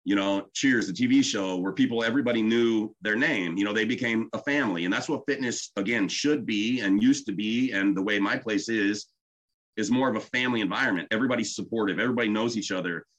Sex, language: male, English